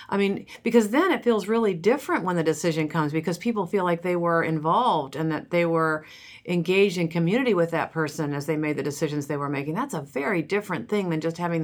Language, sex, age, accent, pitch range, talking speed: English, female, 50-69, American, 155-190 Hz, 230 wpm